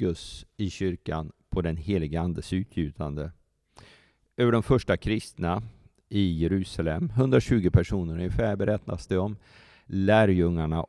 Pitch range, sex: 85-110 Hz, male